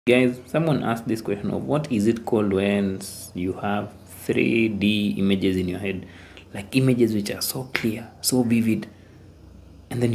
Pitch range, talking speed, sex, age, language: 95-115 Hz, 165 wpm, male, 30-49, English